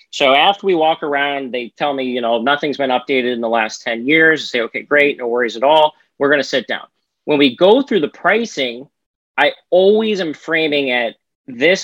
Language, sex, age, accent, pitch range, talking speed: English, male, 40-59, American, 130-165 Hz, 220 wpm